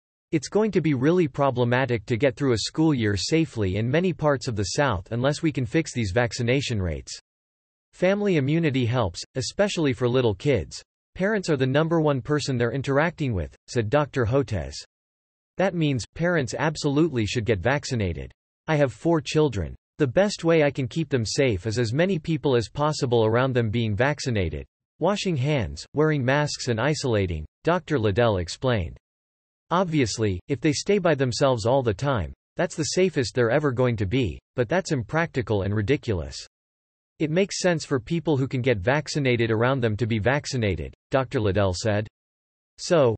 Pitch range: 110-150 Hz